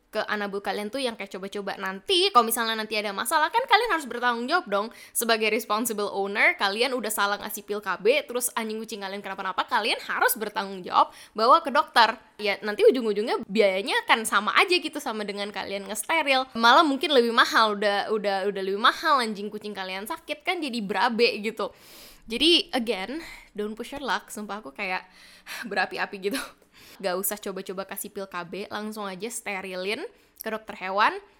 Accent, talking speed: native, 180 wpm